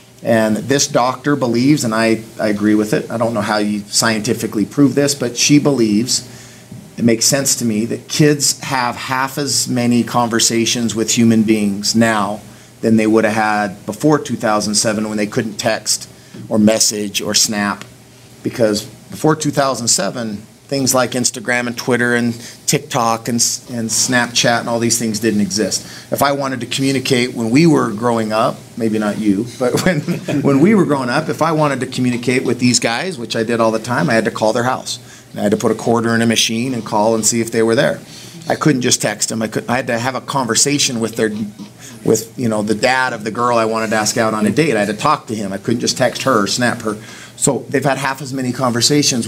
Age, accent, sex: 40-59, American, male